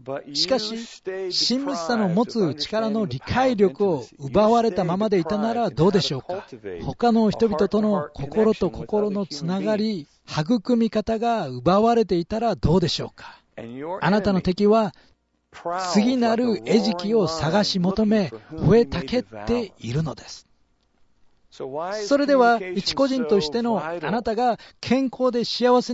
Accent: Japanese